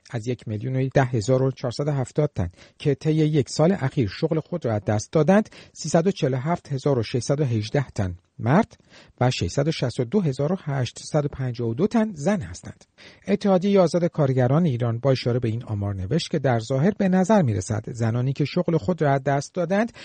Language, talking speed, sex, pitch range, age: Persian, 170 wpm, male, 130-190 Hz, 50-69